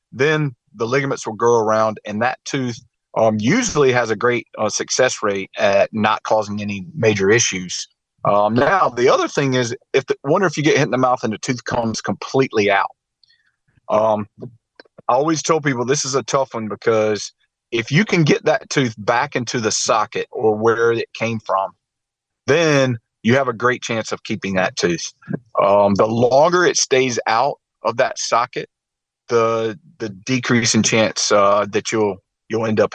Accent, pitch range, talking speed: American, 110-135 Hz, 185 wpm